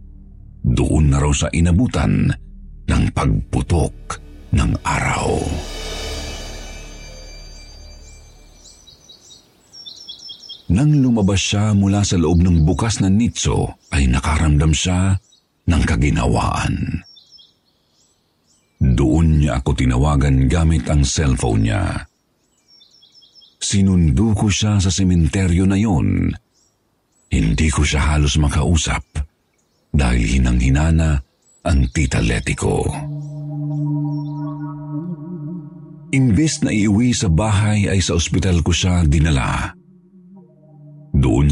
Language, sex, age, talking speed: Filipino, male, 50-69, 85 wpm